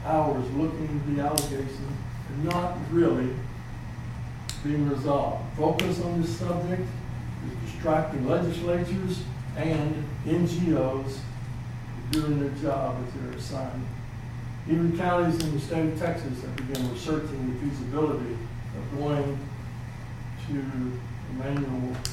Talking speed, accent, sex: 110 wpm, American, male